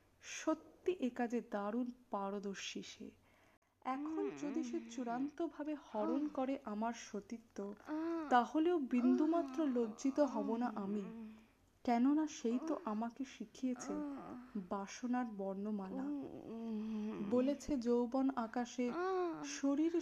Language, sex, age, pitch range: Bengali, female, 20-39, 225-295 Hz